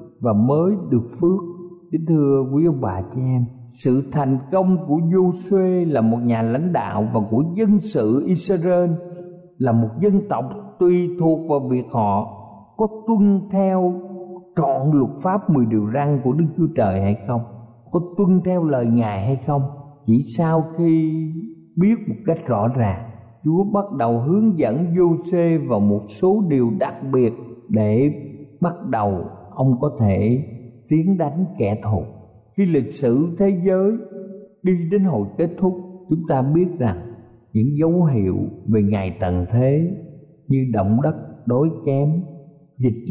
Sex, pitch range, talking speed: male, 115-175 Hz, 160 wpm